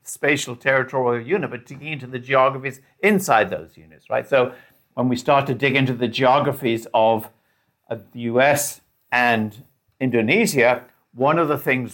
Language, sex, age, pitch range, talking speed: English, male, 60-79, 110-140 Hz, 155 wpm